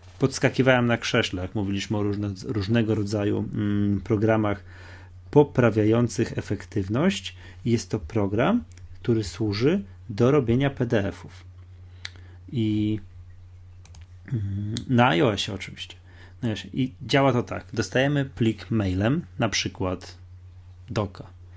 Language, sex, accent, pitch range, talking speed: Polish, male, native, 95-120 Hz, 90 wpm